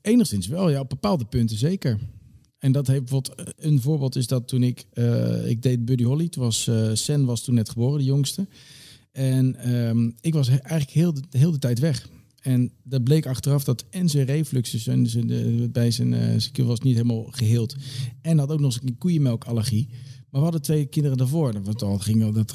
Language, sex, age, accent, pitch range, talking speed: Dutch, male, 40-59, Dutch, 115-150 Hz, 200 wpm